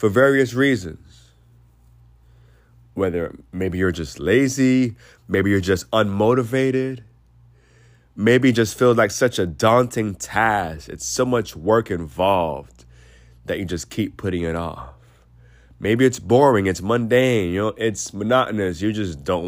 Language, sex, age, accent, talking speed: English, male, 30-49, American, 140 wpm